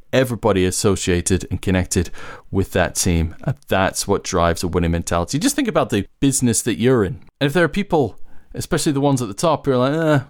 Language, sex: English, male